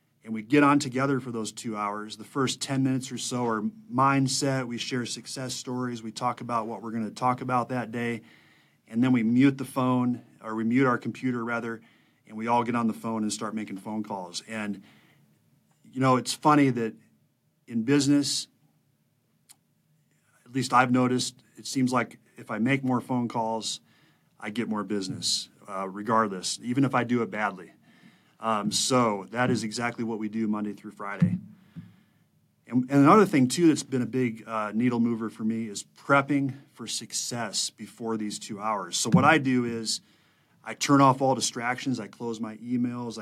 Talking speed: 185 wpm